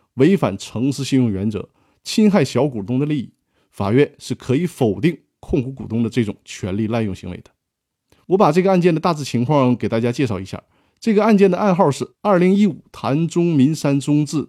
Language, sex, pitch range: Chinese, male, 120-180 Hz